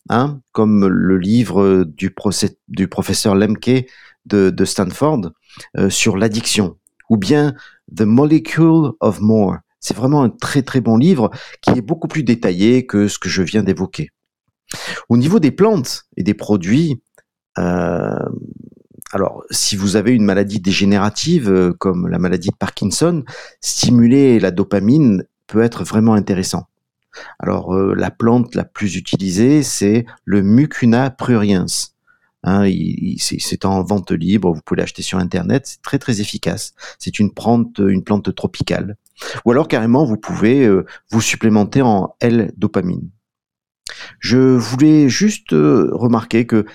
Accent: French